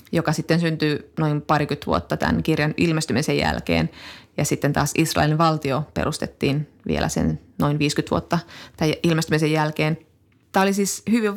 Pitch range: 105-170 Hz